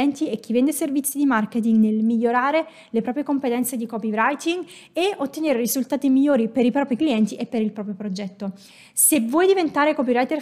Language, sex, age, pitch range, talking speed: Italian, female, 20-39, 225-295 Hz, 175 wpm